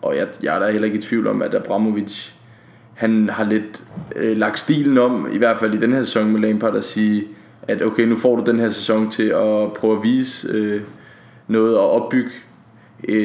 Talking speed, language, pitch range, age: 205 wpm, Danish, 105-115 Hz, 20-39